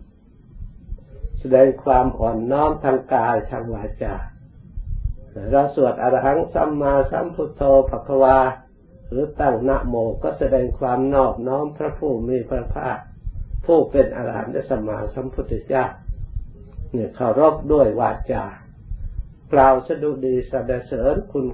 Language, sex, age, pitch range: Thai, male, 60-79, 110-135 Hz